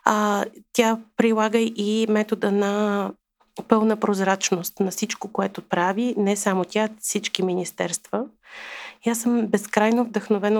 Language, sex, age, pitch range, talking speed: Bulgarian, female, 30-49, 195-225 Hz, 125 wpm